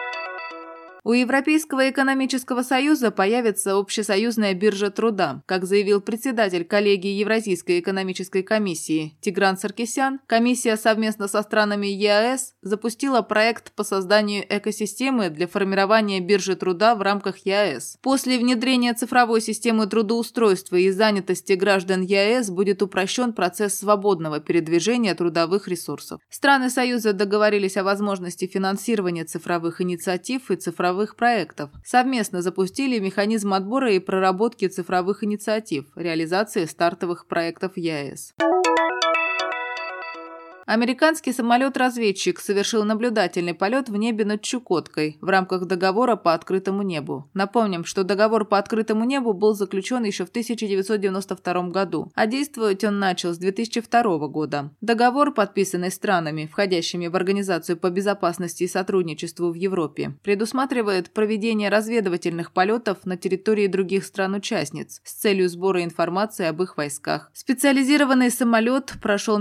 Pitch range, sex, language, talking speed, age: 185-225 Hz, female, Russian, 120 wpm, 20-39